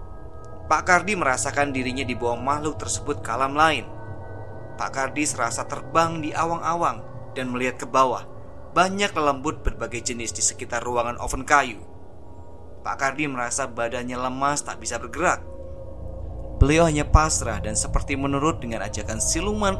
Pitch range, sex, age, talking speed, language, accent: 100-135 Hz, male, 20-39, 135 wpm, Indonesian, native